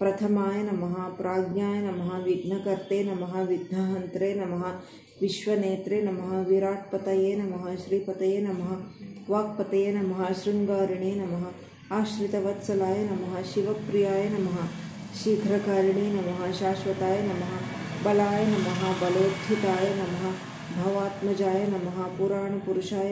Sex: female